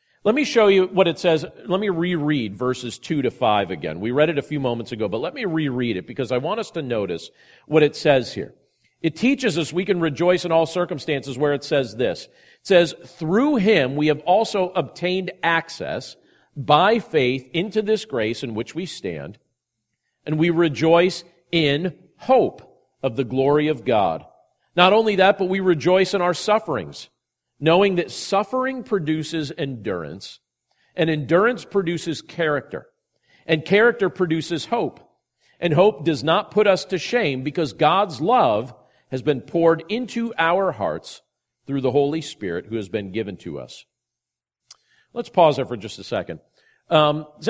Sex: male